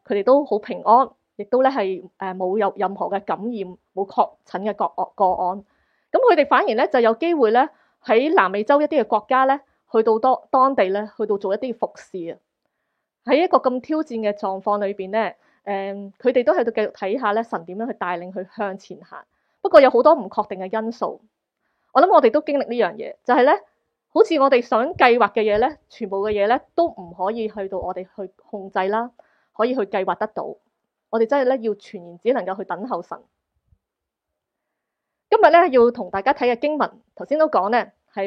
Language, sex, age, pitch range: Chinese, female, 20-39, 195-260 Hz